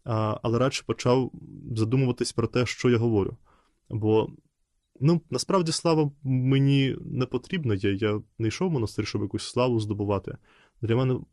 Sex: male